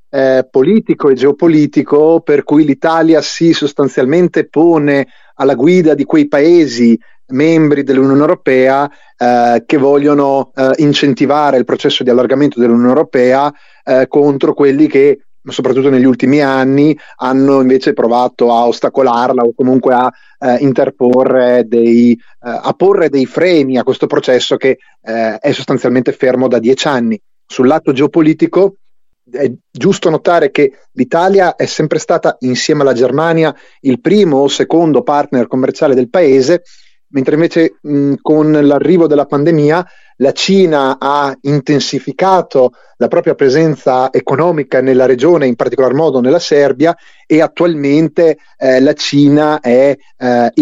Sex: male